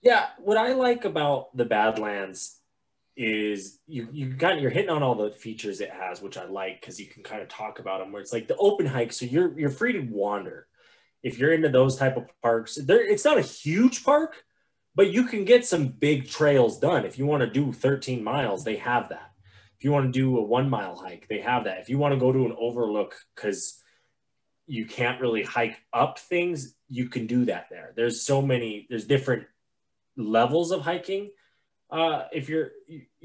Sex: male